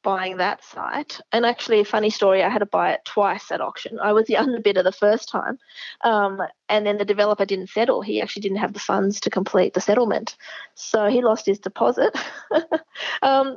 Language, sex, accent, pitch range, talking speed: English, female, Australian, 200-265 Hz, 205 wpm